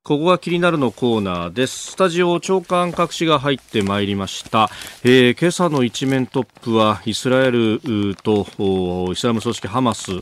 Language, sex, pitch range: Japanese, male, 100-140 Hz